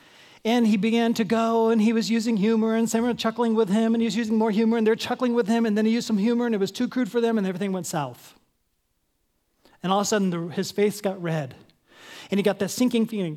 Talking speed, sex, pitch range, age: 265 wpm, male, 180-230 Hz, 30-49